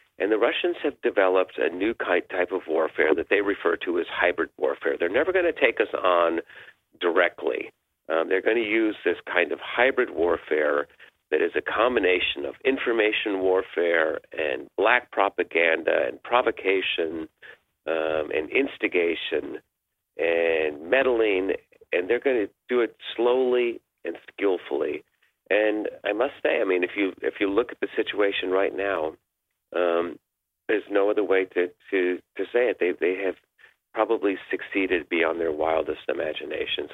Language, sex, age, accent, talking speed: English, male, 40-59, American, 155 wpm